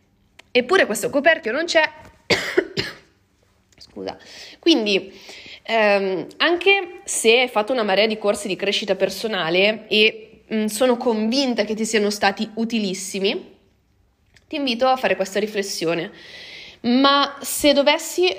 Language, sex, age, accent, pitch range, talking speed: Italian, female, 30-49, native, 210-295 Hz, 120 wpm